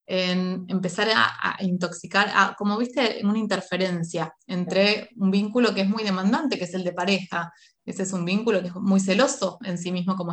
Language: Spanish